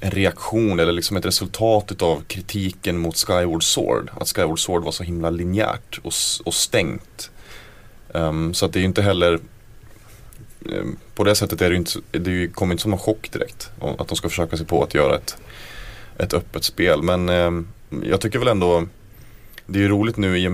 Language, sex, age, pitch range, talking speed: Swedish, male, 30-49, 85-105 Hz, 205 wpm